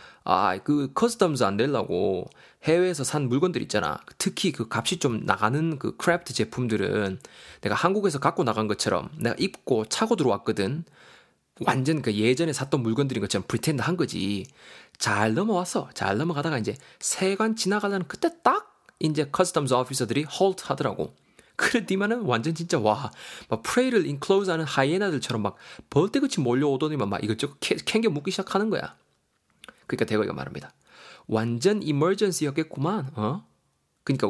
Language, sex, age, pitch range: Korean, male, 20-39, 125-190 Hz